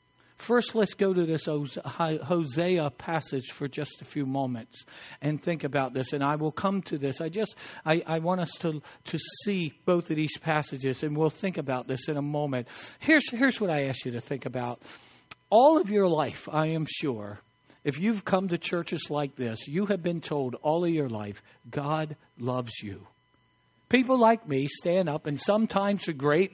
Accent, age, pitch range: American, 60-79, 145-230 Hz